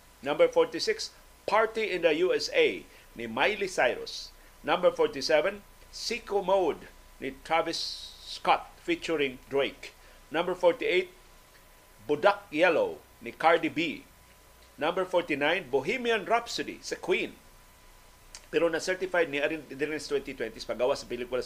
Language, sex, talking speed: Filipino, male, 115 wpm